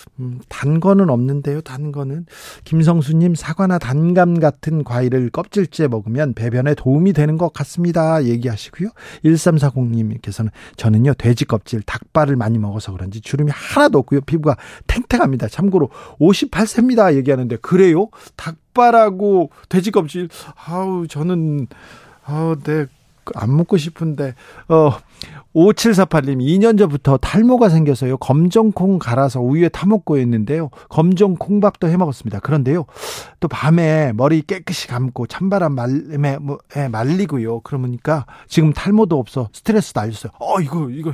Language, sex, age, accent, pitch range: Korean, male, 40-59, native, 130-175 Hz